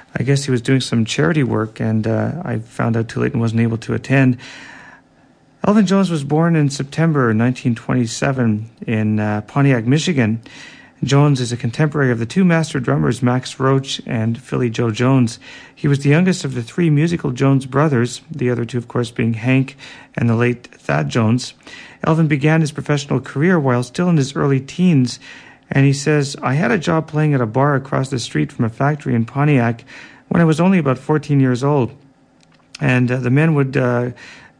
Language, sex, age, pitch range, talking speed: English, male, 40-59, 125-145 Hz, 195 wpm